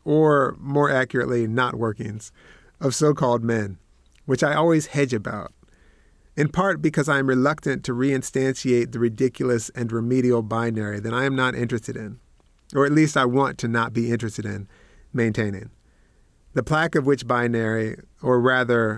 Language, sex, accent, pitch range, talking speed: English, male, American, 115-135 Hz, 155 wpm